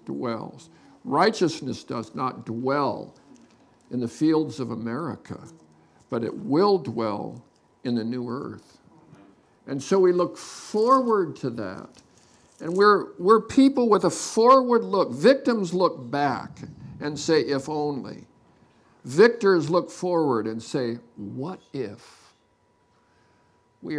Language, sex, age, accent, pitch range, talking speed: English, male, 60-79, American, 130-180 Hz, 120 wpm